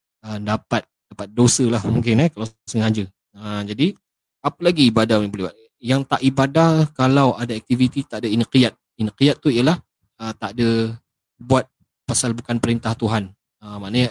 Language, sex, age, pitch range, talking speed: Malay, male, 20-39, 105-120 Hz, 165 wpm